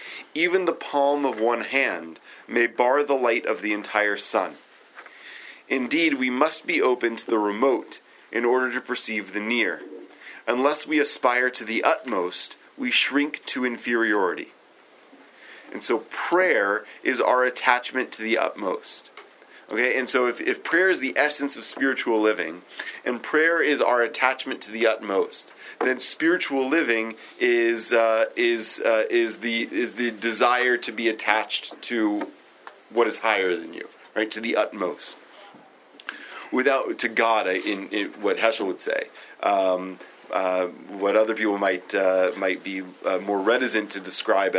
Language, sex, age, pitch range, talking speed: English, male, 30-49, 105-130 Hz, 155 wpm